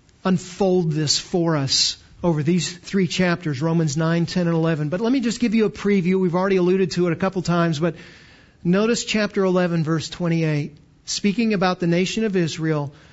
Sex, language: male, English